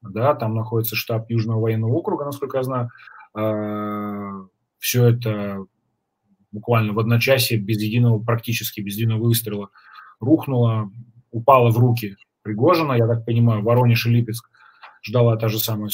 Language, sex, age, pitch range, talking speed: Russian, male, 20-39, 105-120 Hz, 145 wpm